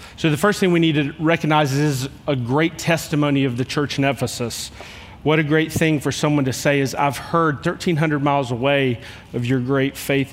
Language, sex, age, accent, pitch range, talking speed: English, male, 30-49, American, 130-160 Hz, 205 wpm